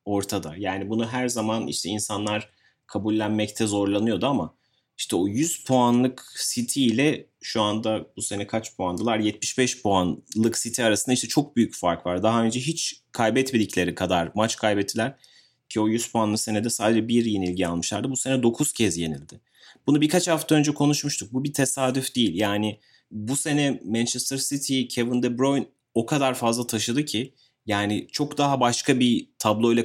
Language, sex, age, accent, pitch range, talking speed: Turkish, male, 30-49, native, 100-125 Hz, 160 wpm